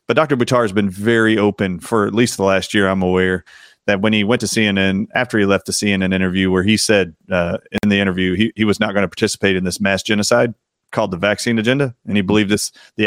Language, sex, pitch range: English, male, 95-115 Hz